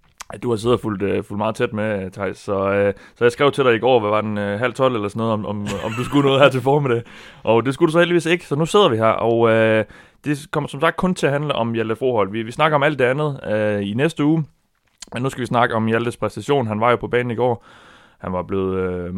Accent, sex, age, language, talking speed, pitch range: native, male, 30-49, Danish, 295 wpm, 100-125 Hz